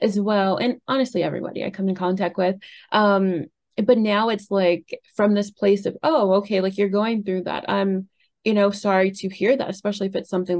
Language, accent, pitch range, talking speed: English, American, 180-210 Hz, 210 wpm